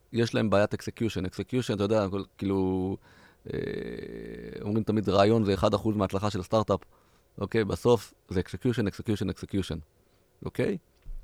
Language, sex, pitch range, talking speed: Hebrew, male, 95-125 Hz, 135 wpm